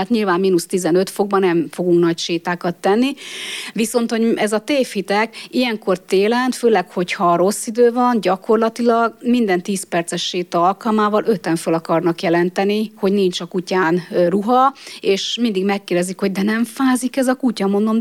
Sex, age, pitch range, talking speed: female, 30-49, 175-210 Hz, 155 wpm